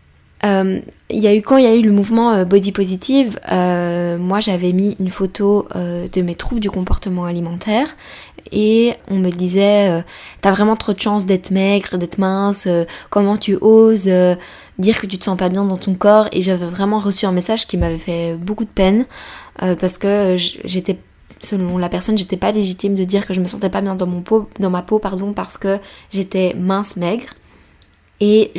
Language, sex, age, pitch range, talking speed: French, female, 20-39, 185-215 Hz, 205 wpm